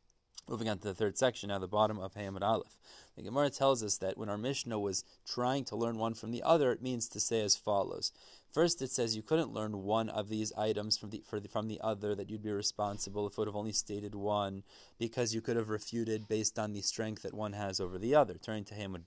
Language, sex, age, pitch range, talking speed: English, male, 30-49, 105-130 Hz, 250 wpm